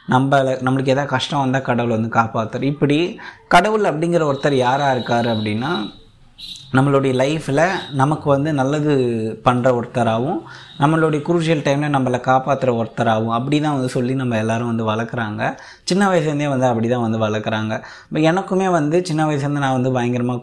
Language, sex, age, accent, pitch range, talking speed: Tamil, male, 20-39, native, 120-150 Hz, 140 wpm